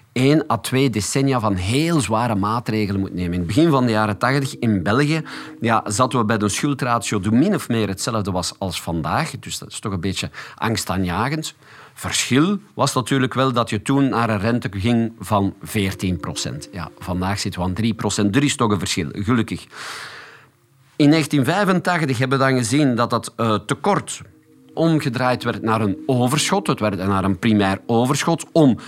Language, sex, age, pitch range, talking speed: Dutch, male, 50-69, 105-140 Hz, 185 wpm